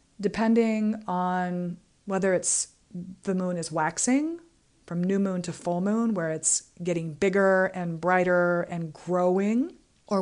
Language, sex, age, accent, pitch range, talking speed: English, female, 40-59, American, 175-215 Hz, 135 wpm